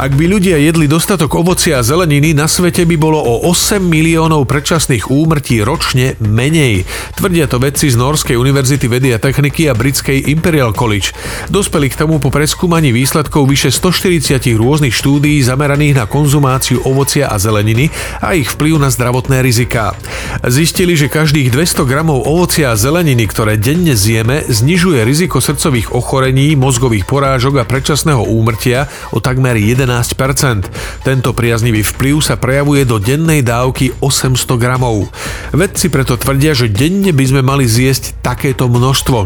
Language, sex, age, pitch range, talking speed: Slovak, male, 40-59, 120-150 Hz, 150 wpm